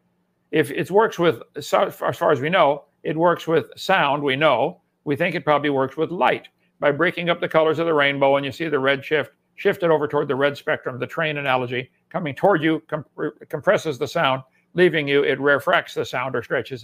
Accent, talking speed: American, 215 wpm